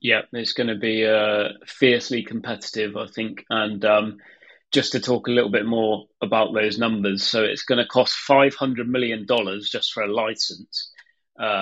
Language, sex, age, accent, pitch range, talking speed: English, male, 30-49, British, 100-115 Hz, 175 wpm